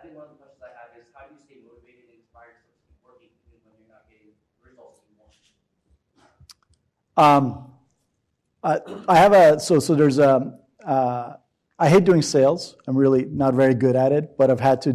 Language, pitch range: English, 130-160 Hz